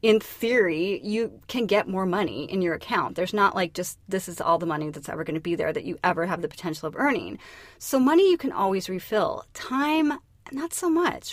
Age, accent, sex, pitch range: 30-49, American, female, 185-280 Hz